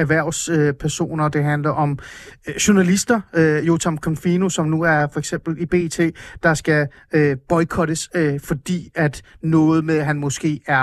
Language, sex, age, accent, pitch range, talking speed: Danish, male, 30-49, native, 145-185 Hz, 140 wpm